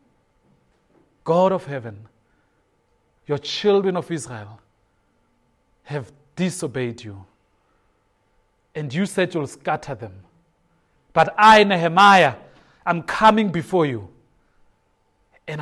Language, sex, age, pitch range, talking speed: English, male, 40-59, 105-155 Hz, 90 wpm